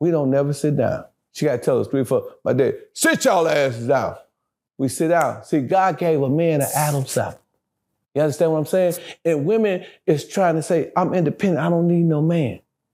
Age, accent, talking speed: 40-59, American, 220 wpm